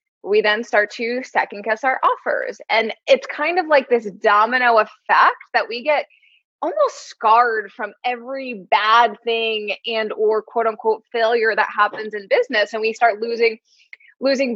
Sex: female